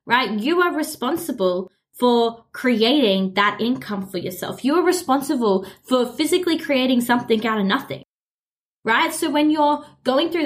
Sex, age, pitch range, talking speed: female, 10-29, 195-265 Hz, 150 wpm